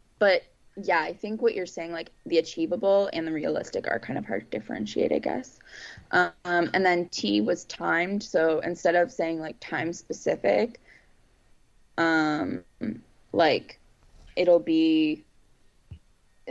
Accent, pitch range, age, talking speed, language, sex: American, 165-200 Hz, 20-39, 140 wpm, English, female